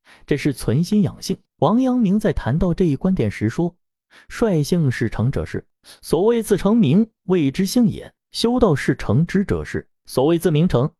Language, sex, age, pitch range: Chinese, male, 30-49, 125-200 Hz